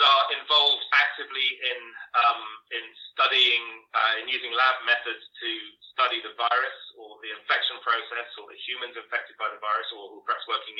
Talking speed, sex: 180 wpm, male